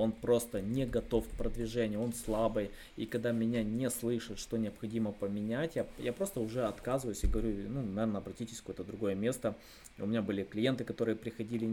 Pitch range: 105-120 Hz